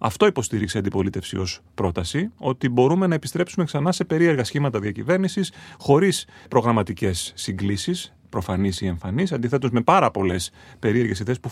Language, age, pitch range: Greek, 30-49, 110-150 Hz